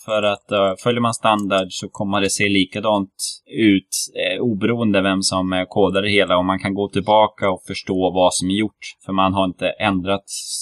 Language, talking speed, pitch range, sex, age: Swedish, 200 wpm, 95-115 Hz, male, 20-39